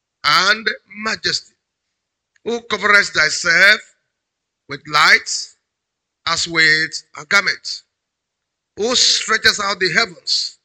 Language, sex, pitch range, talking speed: English, male, 170-230 Hz, 90 wpm